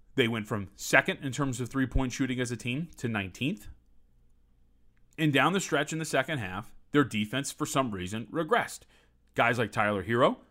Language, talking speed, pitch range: English, 185 wpm, 105-150 Hz